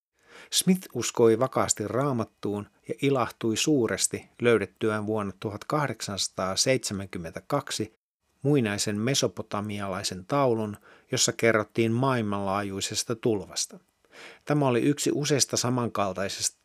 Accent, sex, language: native, male, Finnish